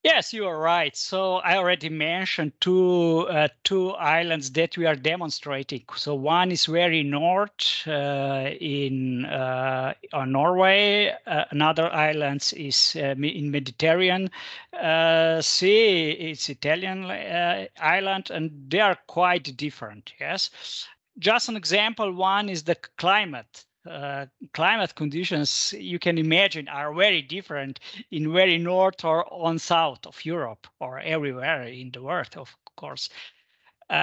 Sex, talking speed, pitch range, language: male, 135 wpm, 145-180 Hz, English